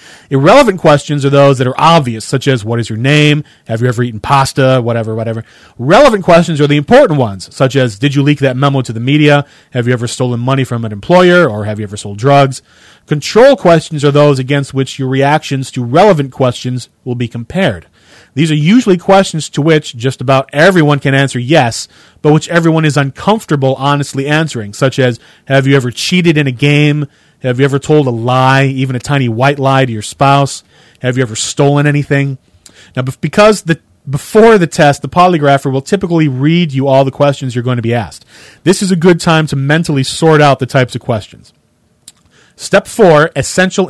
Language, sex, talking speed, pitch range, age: English, male, 200 wpm, 130-160 Hz, 30-49